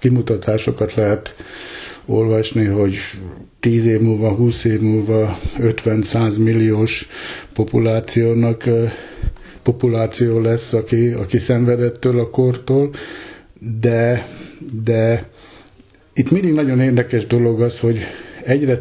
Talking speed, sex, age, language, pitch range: 100 wpm, male, 60-79, Hungarian, 110-125 Hz